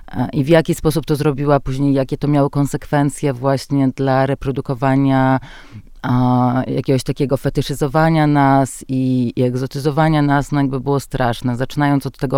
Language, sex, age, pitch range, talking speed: Polish, female, 30-49, 125-140 Hz, 140 wpm